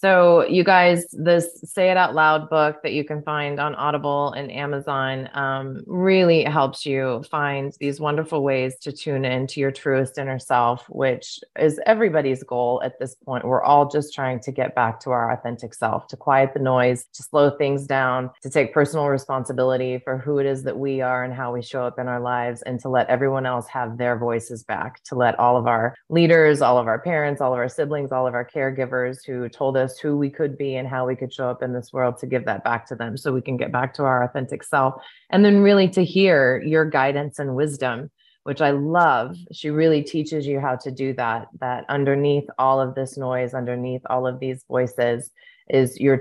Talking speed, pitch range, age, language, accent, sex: 220 wpm, 130-150 Hz, 20-39, English, American, female